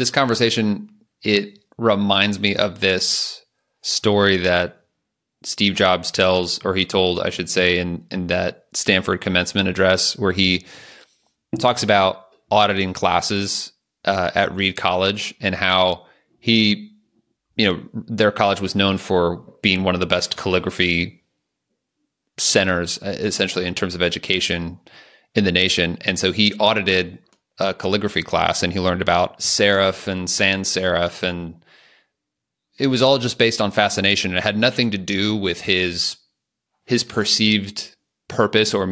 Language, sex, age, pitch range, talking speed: English, male, 30-49, 90-105 Hz, 145 wpm